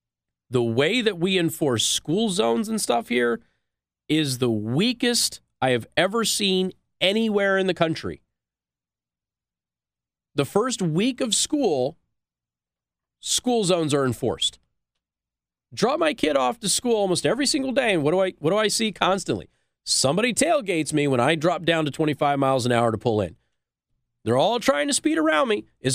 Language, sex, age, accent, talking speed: English, male, 40-59, American, 160 wpm